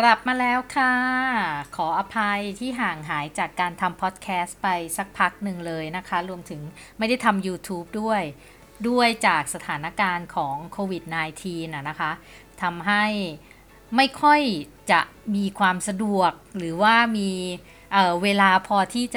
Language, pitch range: Thai, 175-215 Hz